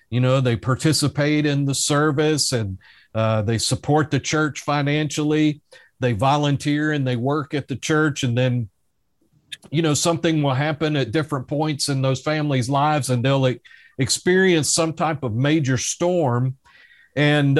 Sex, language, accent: male, English, American